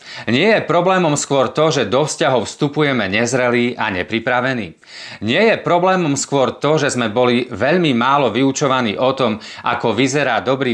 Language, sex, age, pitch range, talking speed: Slovak, male, 30-49, 115-150 Hz, 155 wpm